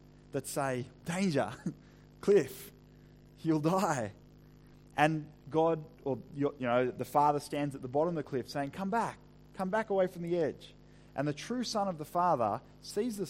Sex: male